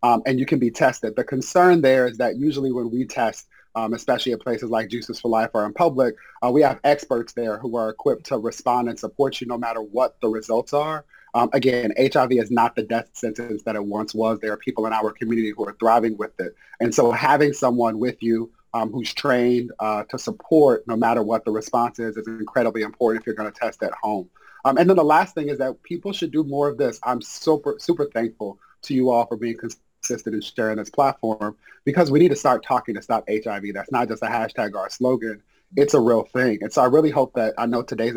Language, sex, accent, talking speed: English, male, American, 240 wpm